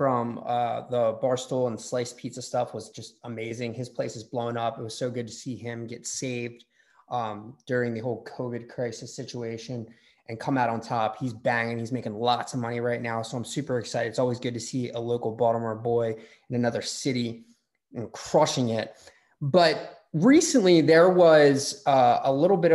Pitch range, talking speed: 120-155 Hz, 195 wpm